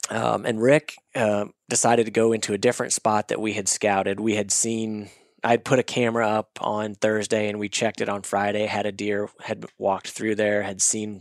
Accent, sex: American, male